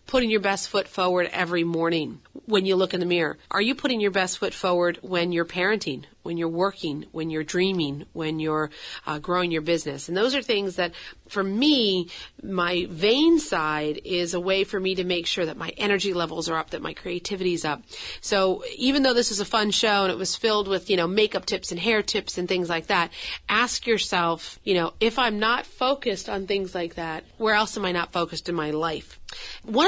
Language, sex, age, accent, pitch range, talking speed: English, female, 40-59, American, 170-210 Hz, 220 wpm